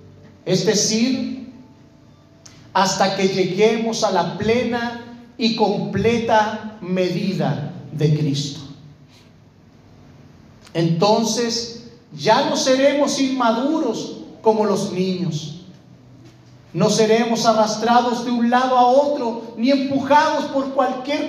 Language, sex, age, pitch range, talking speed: Spanish, male, 40-59, 180-240 Hz, 95 wpm